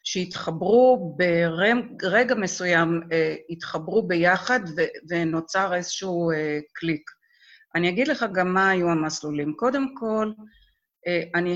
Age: 50-69